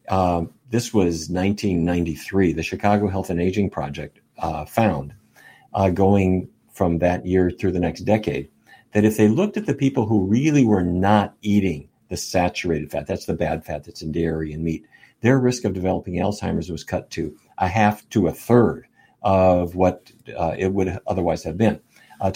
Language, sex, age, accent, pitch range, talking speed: English, male, 50-69, American, 90-115 Hz, 180 wpm